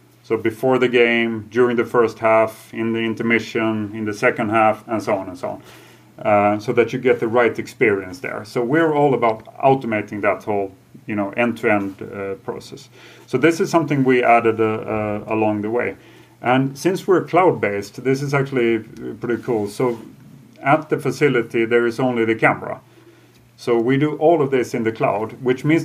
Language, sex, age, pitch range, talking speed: English, male, 40-59, 115-135 Hz, 190 wpm